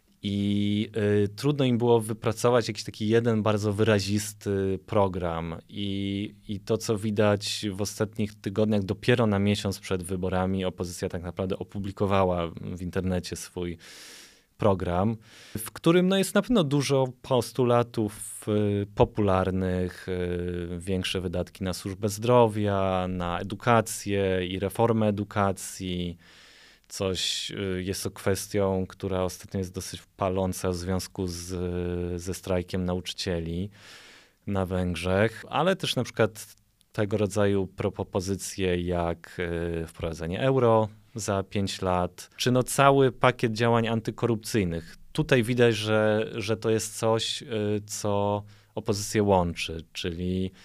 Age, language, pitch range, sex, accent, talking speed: 20-39, Polish, 95-110 Hz, male, native, 115 wpm